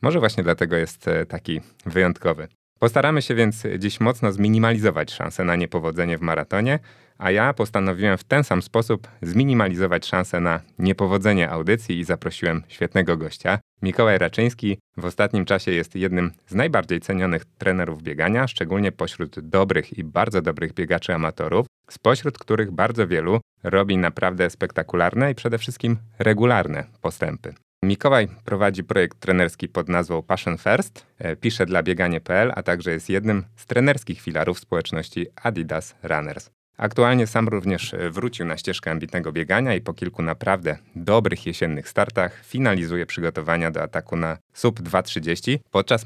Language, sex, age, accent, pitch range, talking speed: Polish, male, 30-49, native, 85-110 Hz, 140 wpm